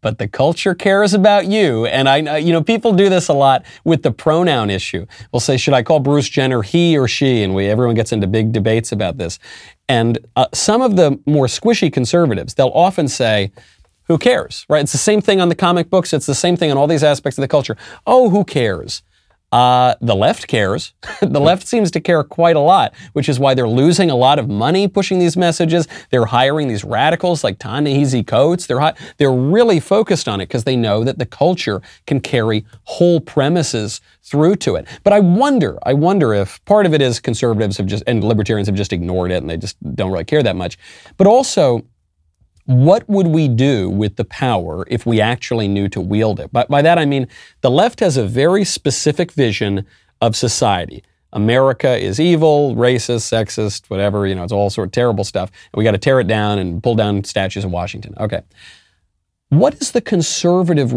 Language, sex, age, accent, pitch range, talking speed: English, male, 30-49, American, 110-165 Hz, 210 wpm